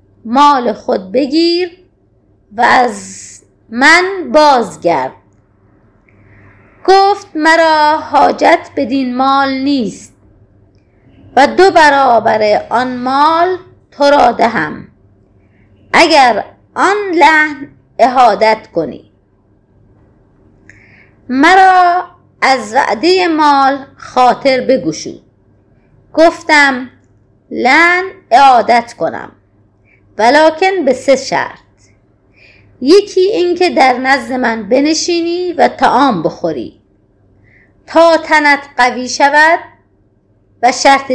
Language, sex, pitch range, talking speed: Persian, female, 210-320 Hz, 80 wpm